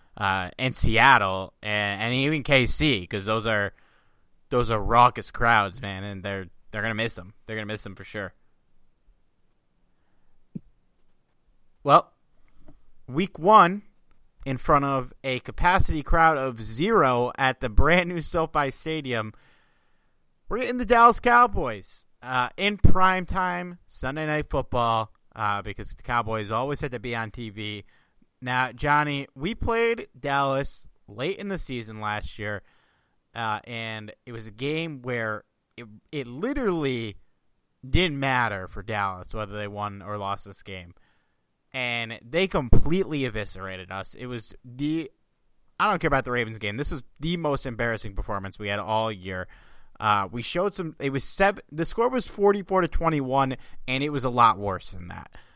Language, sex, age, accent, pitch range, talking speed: English, male, 30-49, American, 105-150 Hz, 155 wpm